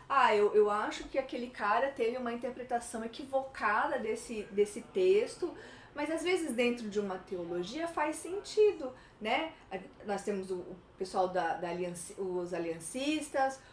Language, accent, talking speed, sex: Portuguese, Brazilian, 145 wpm, female